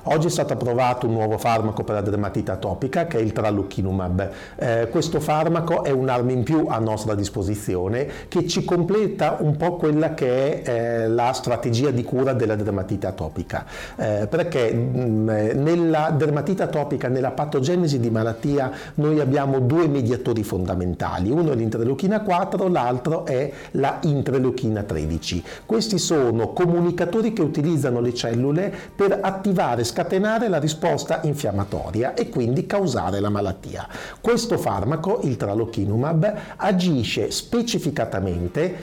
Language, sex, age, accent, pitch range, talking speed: Italian, male, 50-69, native, 110-175 Hz, 140 wpm